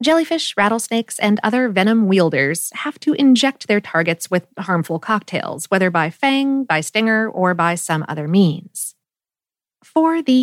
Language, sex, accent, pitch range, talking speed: English, female, American, 190-270 Hz, 150 wpm